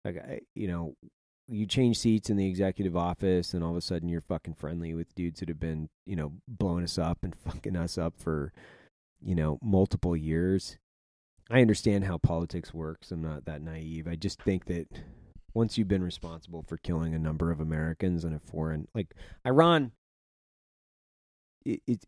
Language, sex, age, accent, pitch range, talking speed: English, male, 30-49, American, 80-110 Hz, 180 wpm